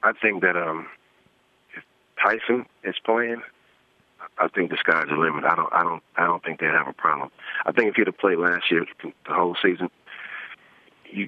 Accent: American